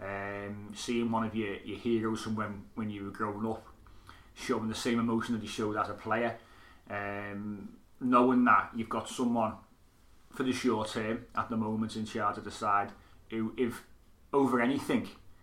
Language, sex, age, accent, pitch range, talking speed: English, male, 30-49, British, 105-120 Hz, 180 wpm